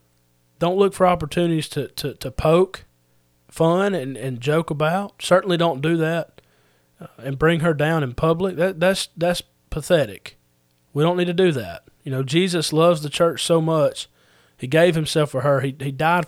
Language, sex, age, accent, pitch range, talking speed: English, male, 30-49, American, 115-170 Hz, 180 wpm